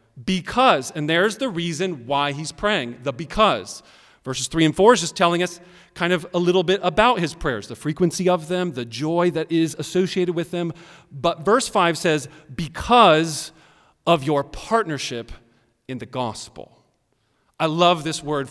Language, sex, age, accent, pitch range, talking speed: English, male, 40-59, American, 130-180 Hz, 170 wpm